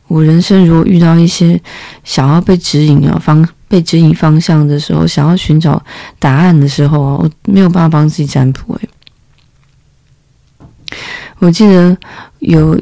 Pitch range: 150-180 Hz